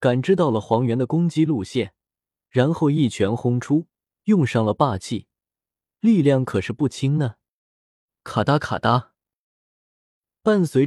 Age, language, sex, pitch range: 20-39, Chinese, male, 115-165 Hz